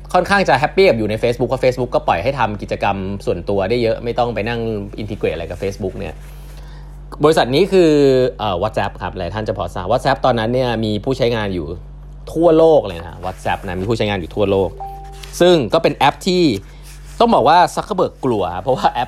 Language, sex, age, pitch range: Thai, male, 20-39, 100-150 Hz